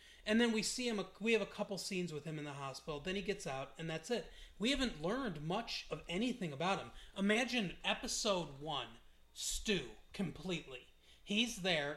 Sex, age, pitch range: male, 30-49, 150-195 Hz